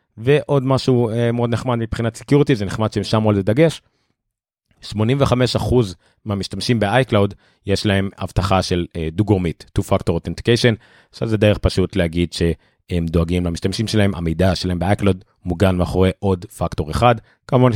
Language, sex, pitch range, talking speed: Hebrew, male, 90-120 Hz, 145 wpm